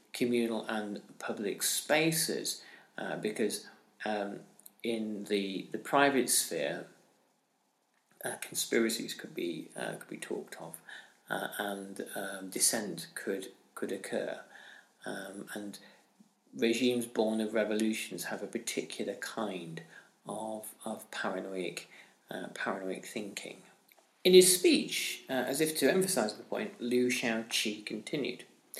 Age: 40-59